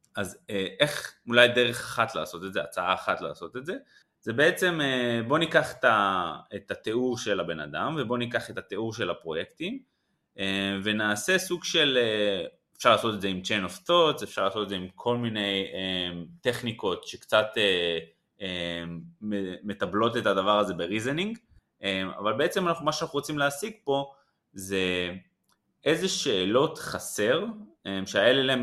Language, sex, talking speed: Hebrew, male, 135 wpm